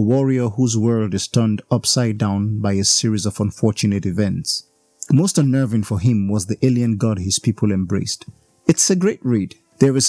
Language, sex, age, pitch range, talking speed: English, male, 30-49, 105-130 Hz, 185 wpm